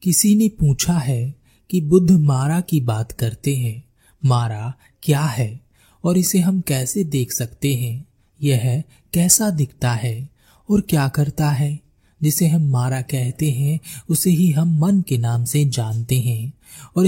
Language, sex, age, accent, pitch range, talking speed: Hindi, male, 30-49, native, 125-165 Hz, 160 wpm